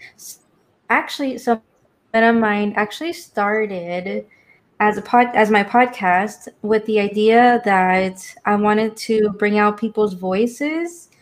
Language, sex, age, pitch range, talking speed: English, female, 20-39, 205-235 Hz, 120 wpm